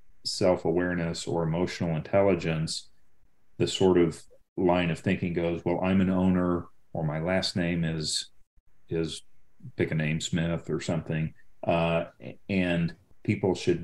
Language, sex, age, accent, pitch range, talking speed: English, male, 40-59, American, 80-95 Hz, 135 wpm